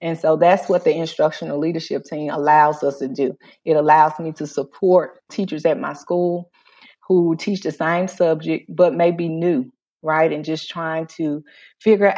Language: English